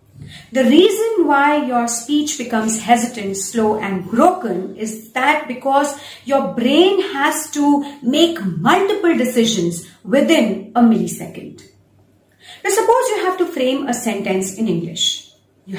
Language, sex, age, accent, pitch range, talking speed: English, female, 40-59, Indian, 200-295 Hz, 130 wpm